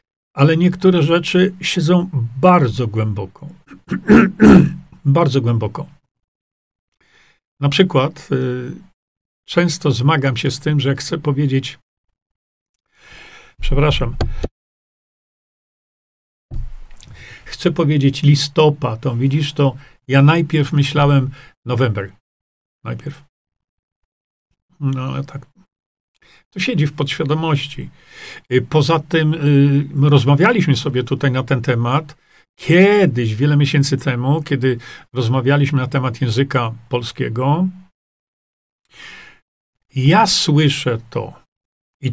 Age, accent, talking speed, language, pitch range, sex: 50-69, native, 85 wpm, Polish, 130-165 Hz, male